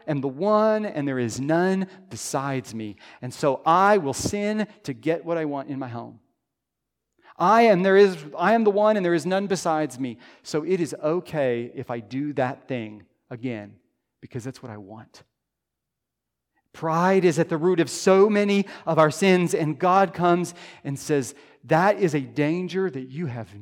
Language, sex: English, male